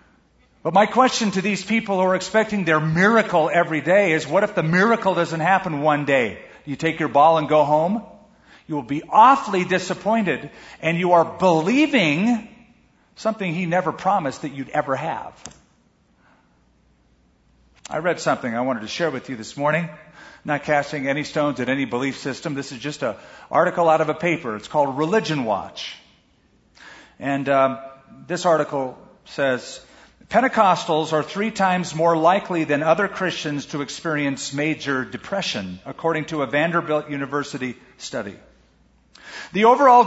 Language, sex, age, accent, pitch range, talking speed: English, male, 50-69, American, 145-185 Hz, 155 wpm